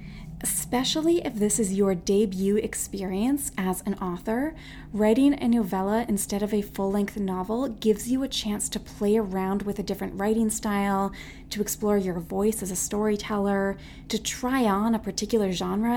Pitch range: 190-225 Hz